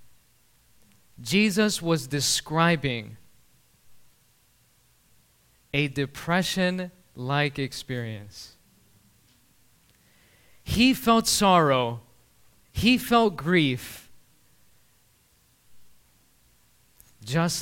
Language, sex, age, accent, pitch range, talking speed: English, male, 20-39, American, 125-185 Hz, 50 wpm